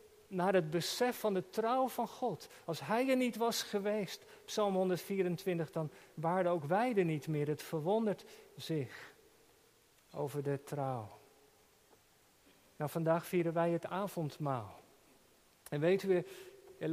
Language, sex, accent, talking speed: Dutch, male, Dutch, 140 wpm